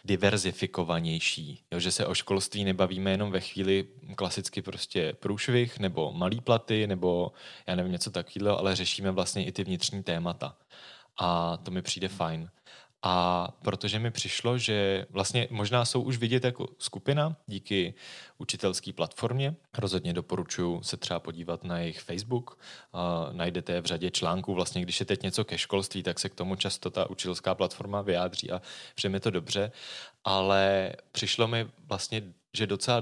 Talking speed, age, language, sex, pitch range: 160 wpm, 20-39, Czech, male, 90-110 Hz